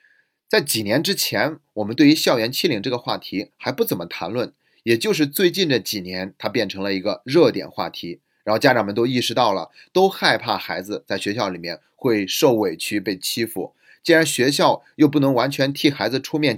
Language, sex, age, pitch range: Chinese, male, 30-49, 110-165 Hz